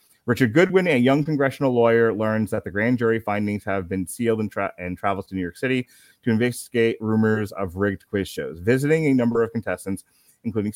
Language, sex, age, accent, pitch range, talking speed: English, male, 30-49, American, 95-125 Hz, 200 wpm